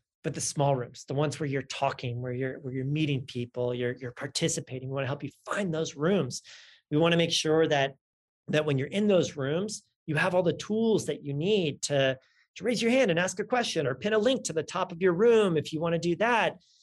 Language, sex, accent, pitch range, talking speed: English, male, American, 135-170 Hz, 255 wpm